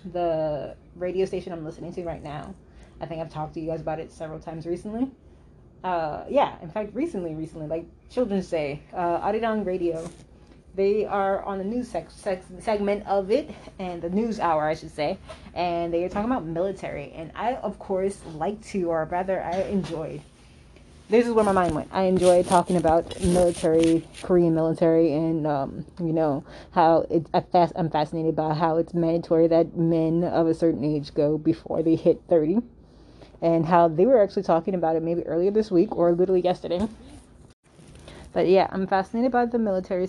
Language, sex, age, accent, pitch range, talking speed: English, female, 20-39, American, 160-185 Hz, 185 wpm